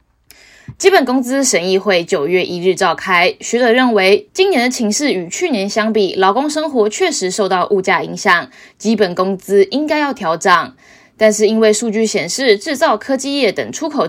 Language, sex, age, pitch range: Chinese, female, 20-39, 190-260 Hz